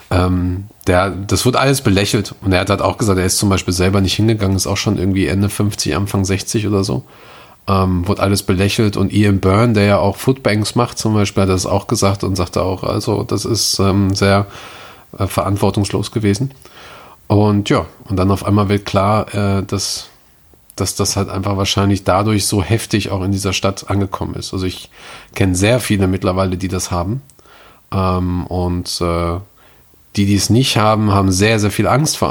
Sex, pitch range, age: male, 95-105 Hz, 40-59